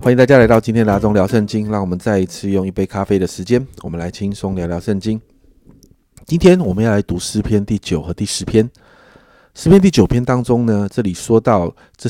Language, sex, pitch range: Chinese, male, 95-125 Hz